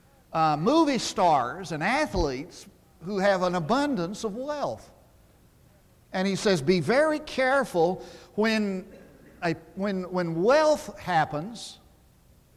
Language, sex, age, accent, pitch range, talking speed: English, male, 60-79, American, 150-215 Hz, 110 wpm